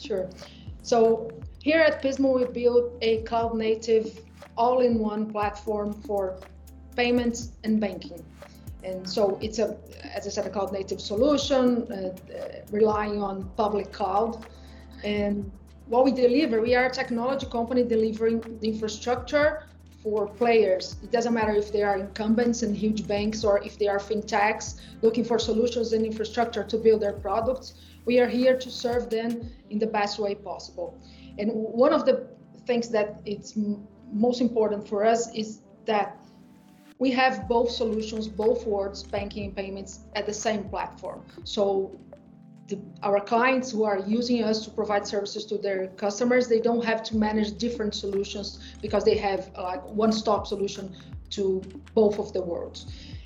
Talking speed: 160 wpm